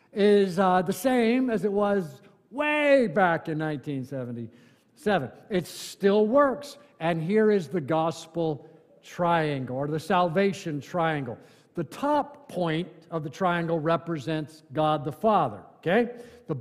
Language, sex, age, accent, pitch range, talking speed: English, male, 50-69, American, 160-200 Hz, 130 wpm